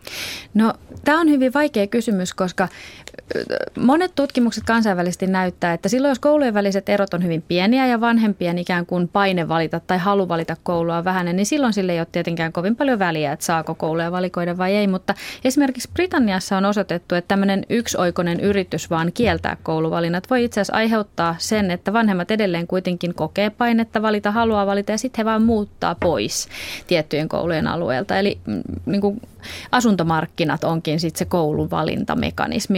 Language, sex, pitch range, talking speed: Finnish, female, 170-215 Hz, 165 wpm